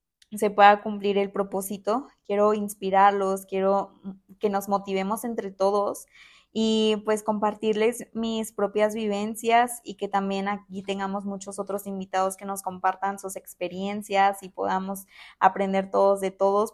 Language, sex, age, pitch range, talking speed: Spanish, female, 20-39, 190-210 Hz, 135 wpm